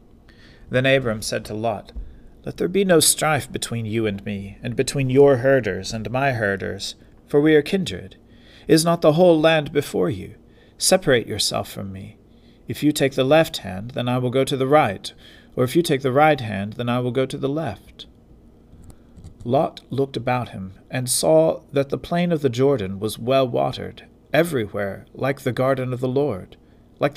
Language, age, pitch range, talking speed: English, 40-59, 105-140 Hz, 190 wpm